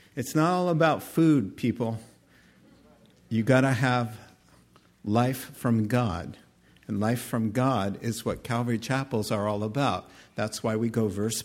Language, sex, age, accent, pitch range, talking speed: English, male, 50-69, American, 110-145 Hz, 150 wpm